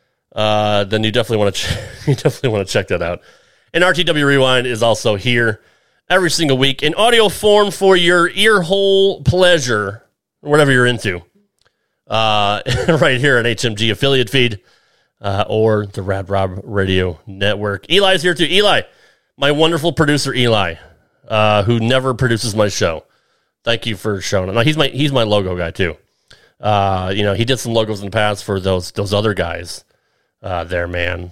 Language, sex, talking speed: English, male, 180 wpm